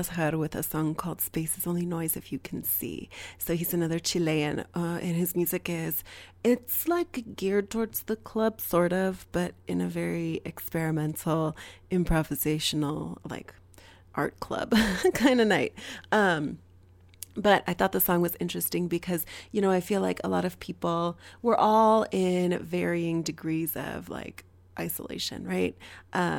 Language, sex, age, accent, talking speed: English, female, 30-49, American, 160 wpm